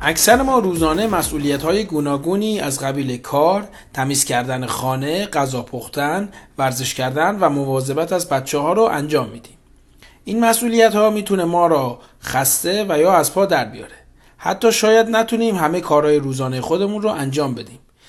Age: 40-59